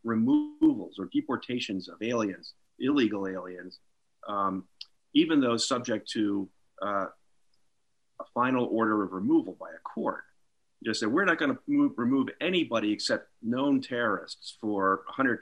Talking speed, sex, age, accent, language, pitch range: 130 wpm, male, 50-69, American, English, 100-125 Hz